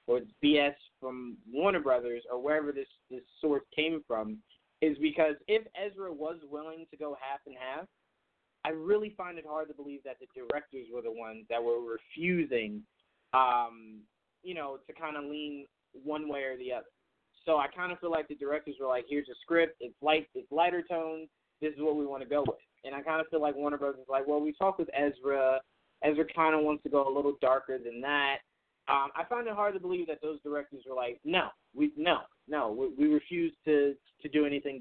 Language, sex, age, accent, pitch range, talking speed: English, male, 20-39, American, 135-165 Hz, 215 wpm